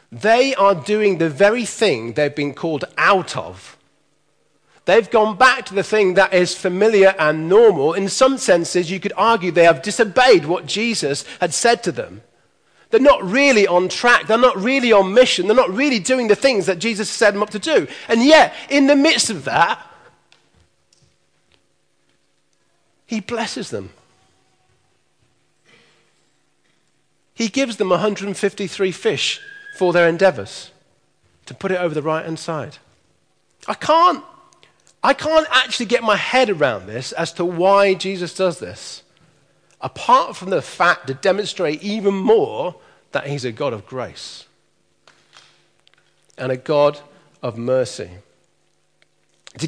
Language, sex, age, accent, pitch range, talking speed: English, male, 40-59, British, 165-235 Hz, 145 wpm